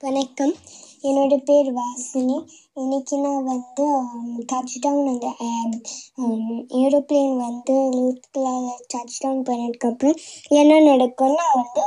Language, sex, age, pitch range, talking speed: Tamil, male, 20-39, 245-285 Hz, 95 wpm